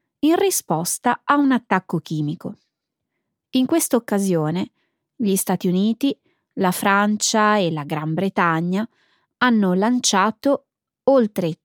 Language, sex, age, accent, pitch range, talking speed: Italian, female, 20-39, native, 175-250 Hz, 110 wpm